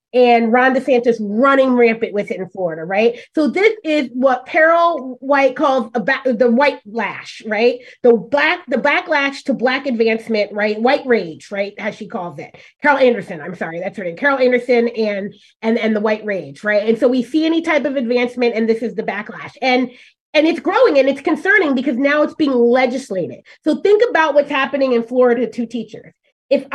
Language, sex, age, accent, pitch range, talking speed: English, female, 30-49, American, 230-300 Hz, 195 wpm